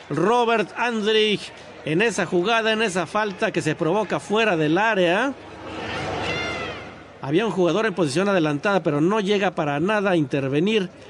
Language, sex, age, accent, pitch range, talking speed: Spanish, male, 50-69, Mexican, 160-210 Hz, 145 wpm